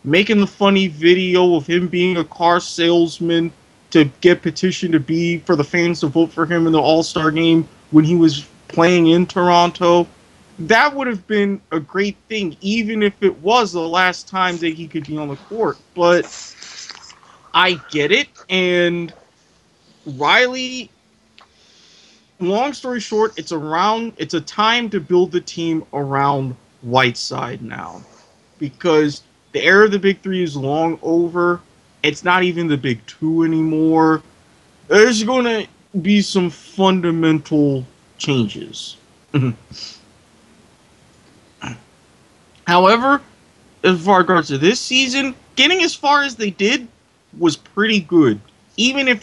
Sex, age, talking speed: male, 20-39, 140 wpm